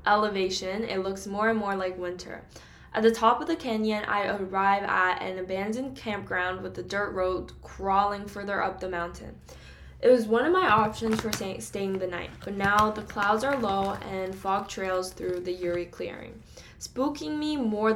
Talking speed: 185 wpm